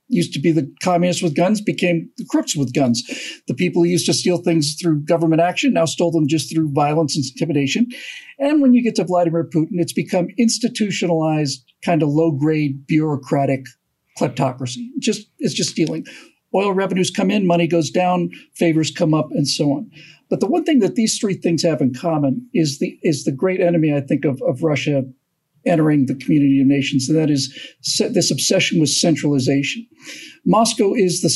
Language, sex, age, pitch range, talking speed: English, male, 50-69, 155-230 Hz, 190 wpm